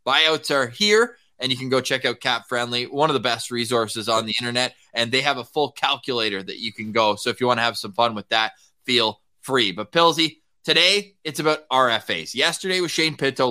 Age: 20-39